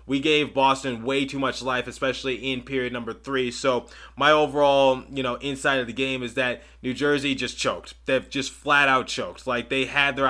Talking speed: 210 wpm